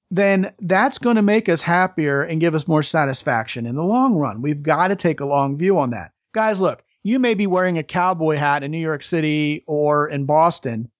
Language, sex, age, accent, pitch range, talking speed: English, male, 40-59, American, 145-195 Hz, 225 wpm